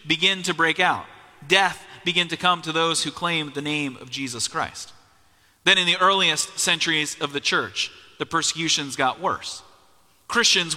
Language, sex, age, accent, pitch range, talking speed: English, male, 30-49, American, 140-190 Hz, 165 wpm